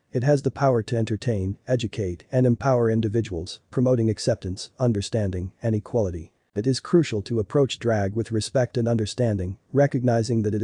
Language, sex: English, male